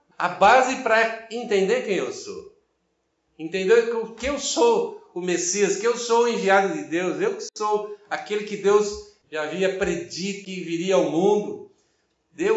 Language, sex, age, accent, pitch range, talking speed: Portuguese, male, 60-79, Brazilian, 170-260 Hz, 160 wpm